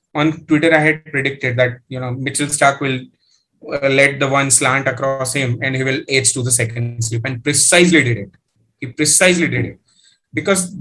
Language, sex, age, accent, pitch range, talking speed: English, male, 20-39, Indian, 120-145 Hz, 195 wpm